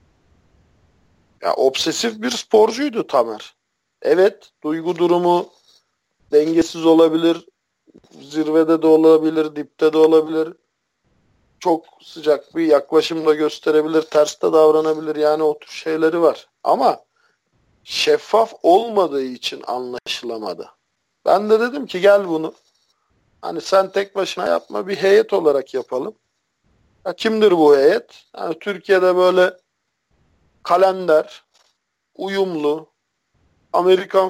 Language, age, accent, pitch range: Turkish, 50-69, native, 150-205 Hz